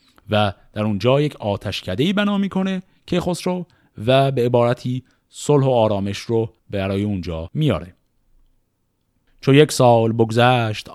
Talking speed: 125 wpm